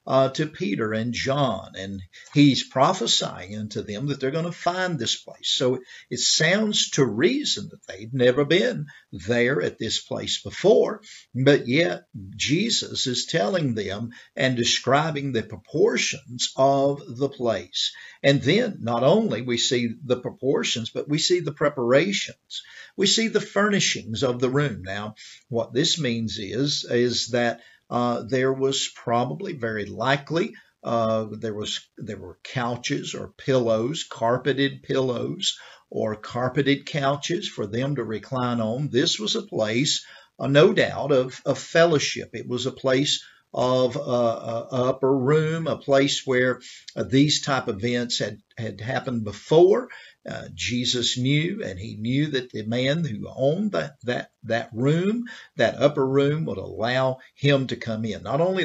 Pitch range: 115-145 Hz